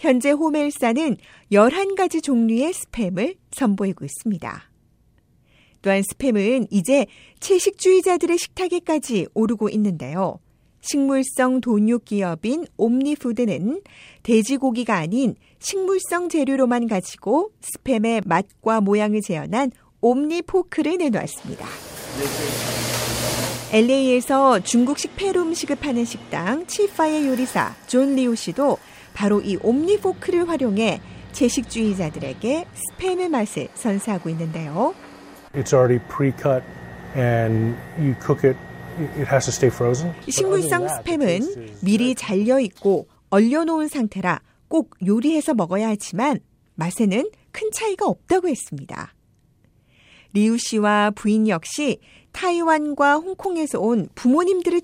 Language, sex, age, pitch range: Korean, female, 40-59, 190-300 Hz